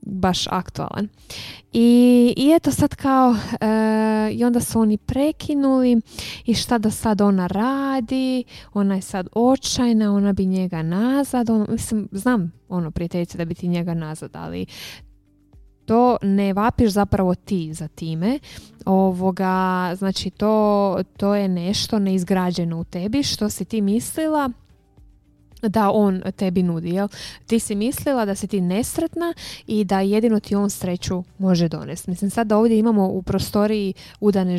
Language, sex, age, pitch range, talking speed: Croatian, female, 20-39, 180-220 Hz, 150 wpm